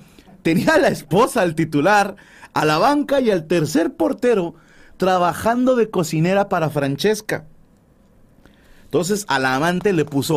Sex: male